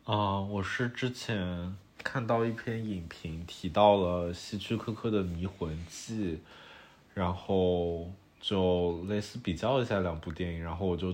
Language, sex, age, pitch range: Chinese, male, 20-39, 85-100 Hz